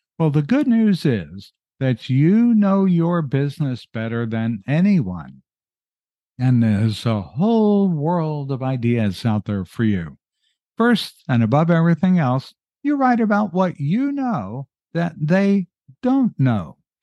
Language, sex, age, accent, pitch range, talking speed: English, male, 60-79, American, 120-180 Hz, 135 wpm